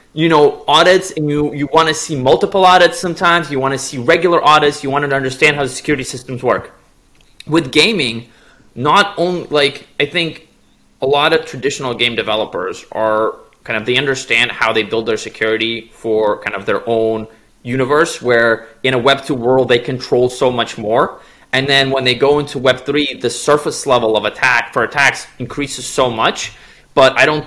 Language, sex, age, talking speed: English, male, 20-39, 185 wpm